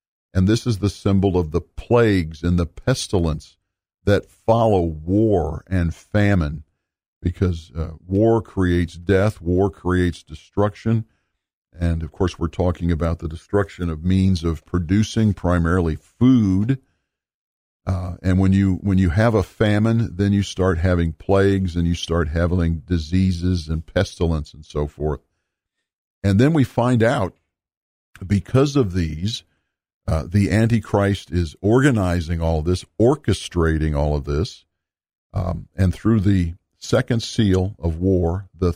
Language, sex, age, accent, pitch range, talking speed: English, male, 50-69, American, 85-105 Hz, 140 wpm